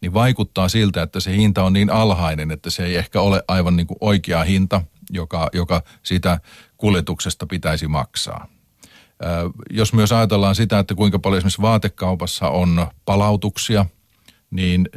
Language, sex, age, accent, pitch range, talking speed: Finnish, male, 40-59, native, 90-105 Hz, 140 wpm